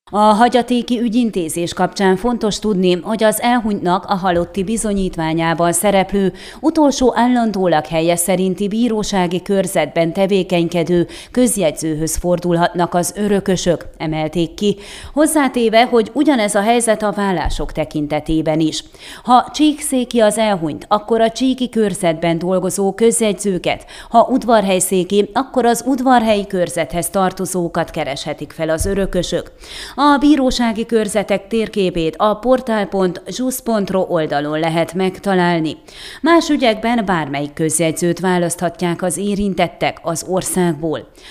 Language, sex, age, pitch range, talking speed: Hungarian, female, 30-49, 170-220 Hz, 105 wpm